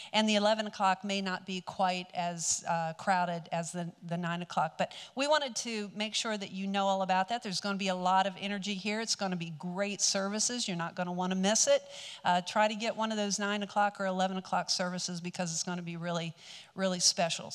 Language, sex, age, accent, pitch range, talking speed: English, male, 50-69, American, 180-210 Hz, 245 wpm